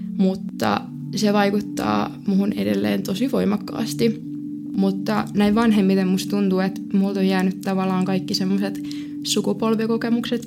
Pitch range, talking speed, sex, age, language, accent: 190-220 Hz, 115 wpm, female, 20-39, Finnish, native